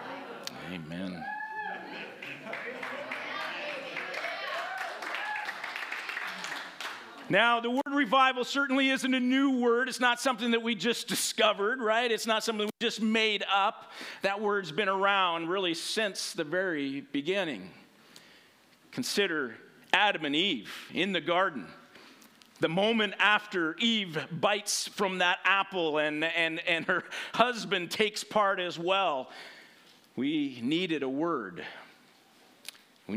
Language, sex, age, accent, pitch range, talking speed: English, male, 50-69, American, 155-230 Hz, 115 wpm